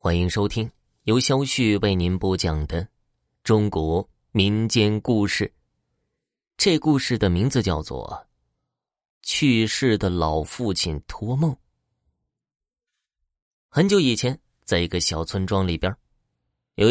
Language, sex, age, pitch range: Chinese, male, 20-39, 85-115 Hz